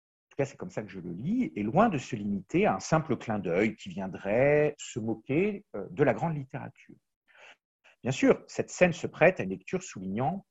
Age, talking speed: 50-69, 205 wpm